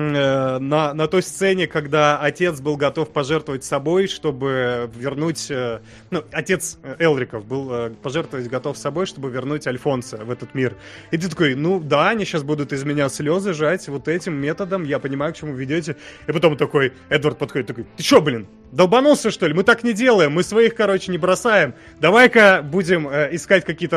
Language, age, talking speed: Russian, 30-49, 175 wpm